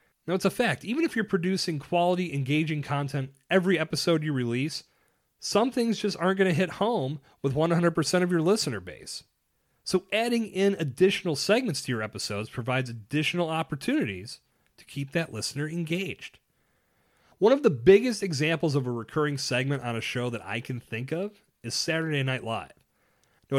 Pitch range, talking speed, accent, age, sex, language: 125-190 Hz, 170 wpm, American, 30-49, male, English